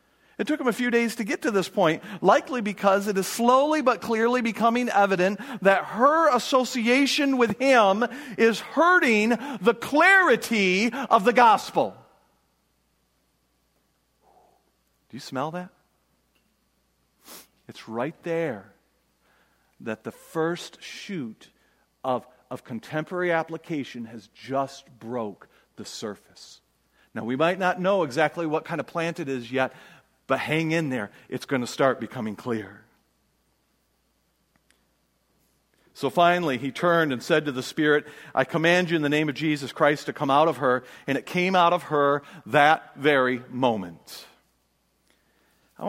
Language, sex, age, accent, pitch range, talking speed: English, male, 40-59, American, 130-200 Hz, 140 wpm